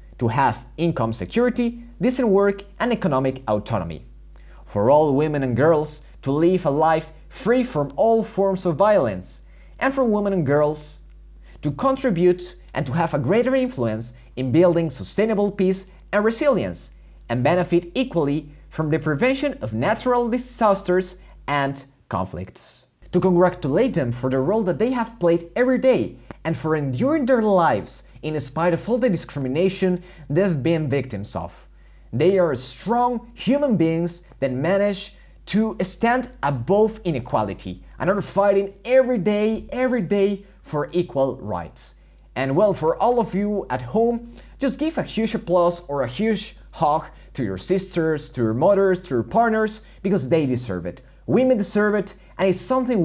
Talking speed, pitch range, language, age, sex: 155 wpm, 140-215 Hz, English, 30-49, male